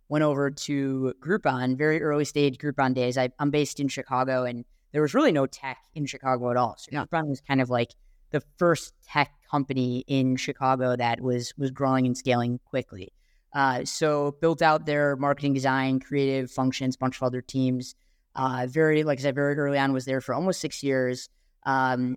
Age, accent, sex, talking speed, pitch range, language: 20-39, American, female, 200 wpm, 130-150 Hz, English